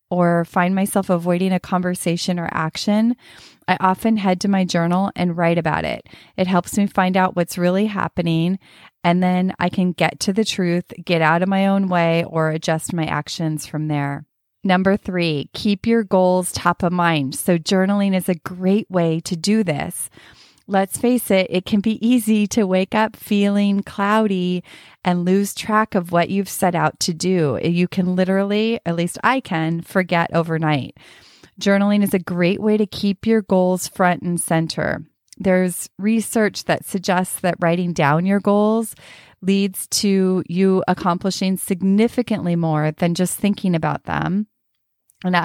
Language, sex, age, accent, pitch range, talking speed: English, female, 30-49, American, 170-200 Hz, 170 wpm